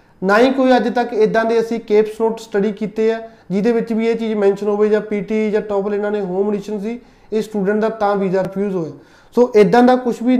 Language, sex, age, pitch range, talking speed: Punjabi, male, 20-39, 195-220 Hz, 225 wpm